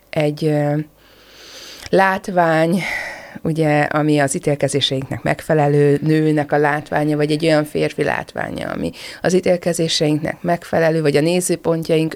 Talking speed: 115 wpm